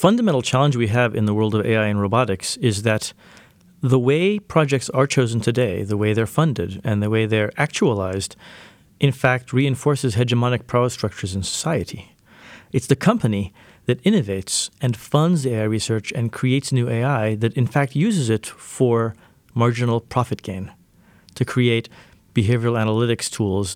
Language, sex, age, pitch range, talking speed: English, male, 40-59, 105-135 Hz, 160 wpm